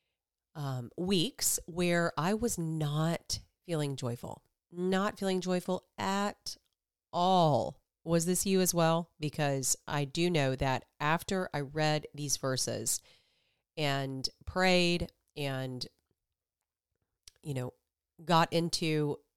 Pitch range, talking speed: 130-170 Hz, 110 wpm